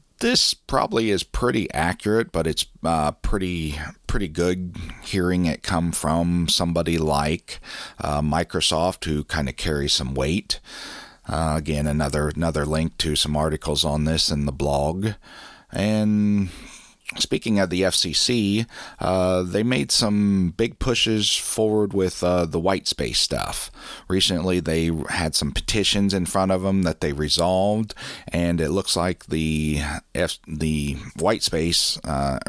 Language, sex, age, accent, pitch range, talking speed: English, male, 40-59, American, 75-95 Hz, 145 wpm